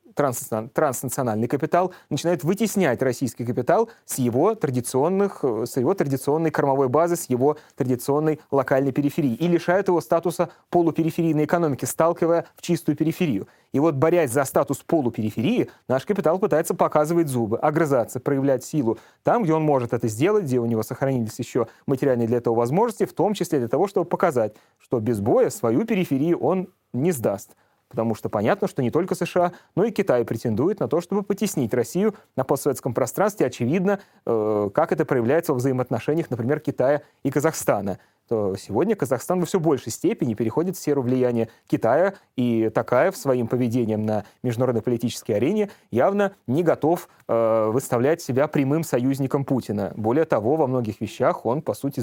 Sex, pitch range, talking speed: male, 125-170 Hz, 160 wpm